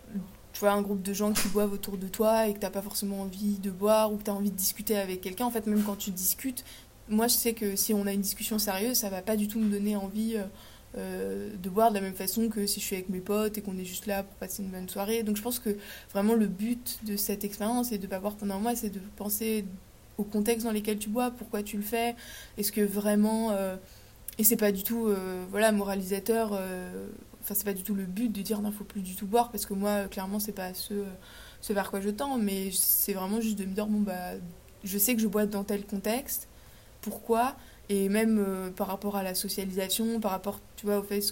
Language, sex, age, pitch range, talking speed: French, female, 20-39, 195-215 Hz, 260 wpm